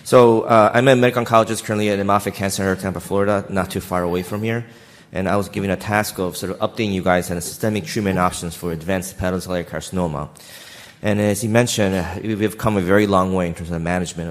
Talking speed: 225 wpm